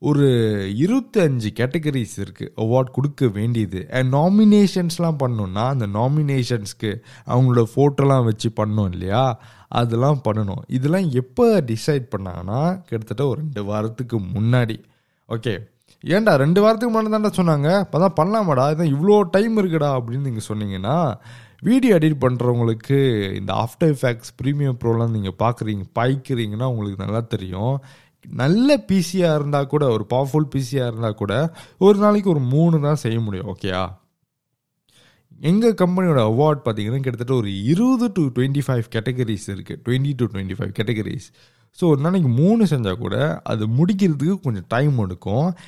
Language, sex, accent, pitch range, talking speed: Tamil, male, native, 110-155 Hz, 130 wpm